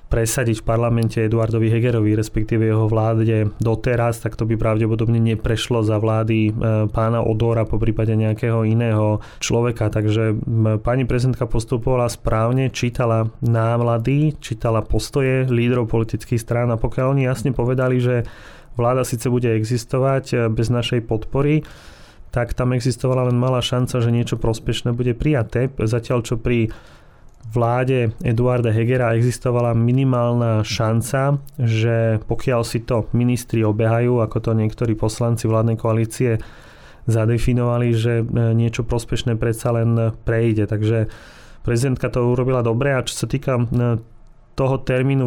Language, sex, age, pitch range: Slovak, male, 30-49, 115-125 Hz